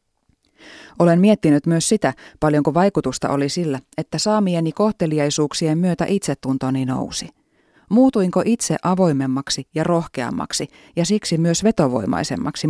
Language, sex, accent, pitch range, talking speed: Finnish, female, native, 145-185 Hz, 110 wpm